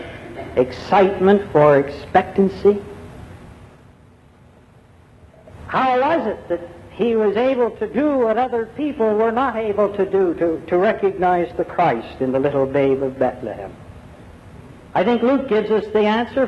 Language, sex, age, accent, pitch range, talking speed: English, male, 60-79, American, 145-230 Hz, 140 wpm